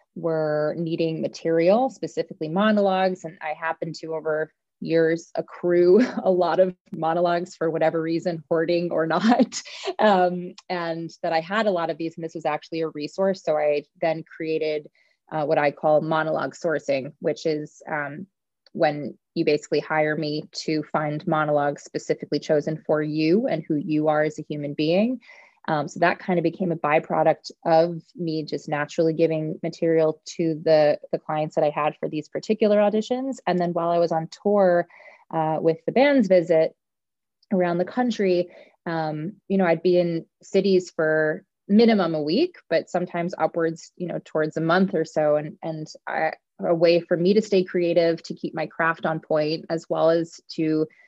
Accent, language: American, English